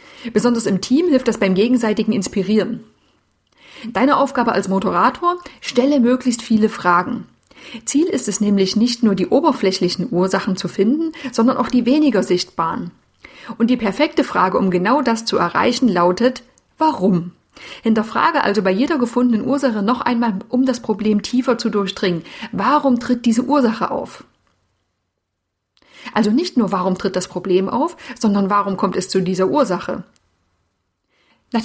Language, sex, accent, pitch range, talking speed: German, female, German, 195-250 Hz, 150 wpm